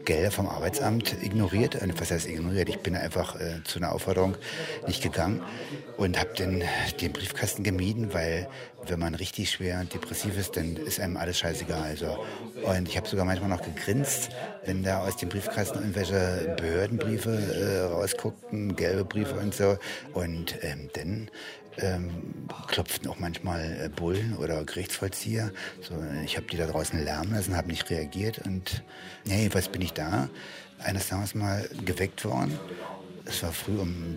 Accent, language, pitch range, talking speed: German, German, 85-105 Hz, 155 wpm